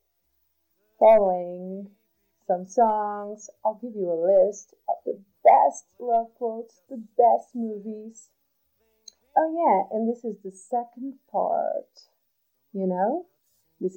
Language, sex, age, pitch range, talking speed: English, female, 40-59, 185-235 Hz, 115 wpm